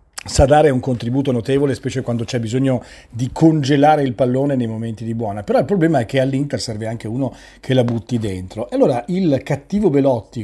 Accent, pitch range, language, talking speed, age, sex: native, 120-155 Hz, Italian, 200 wpm, 40-59, male